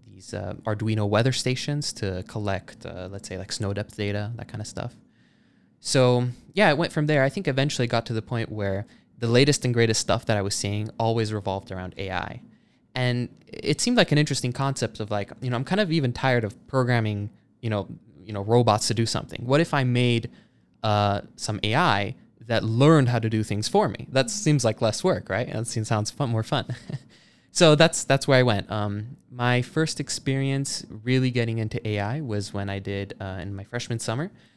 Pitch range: 100-125 Hz